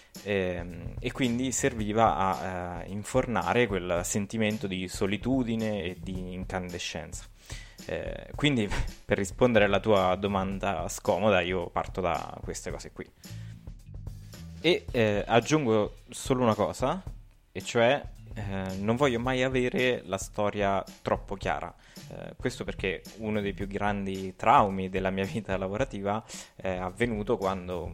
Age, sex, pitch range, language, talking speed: 20-39, male, 95-115 Hz, Italian, 125 wpm